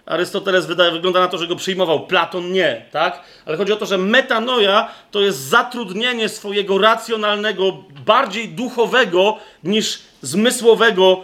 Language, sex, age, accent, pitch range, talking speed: Polish, male, 30-49, native, 180-225 Hz, 135 wpm